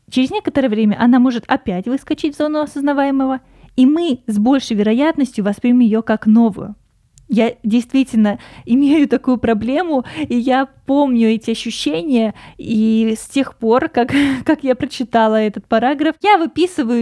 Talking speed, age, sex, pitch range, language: 145 wpm, 20-39, female, 210-260 Hz, Russian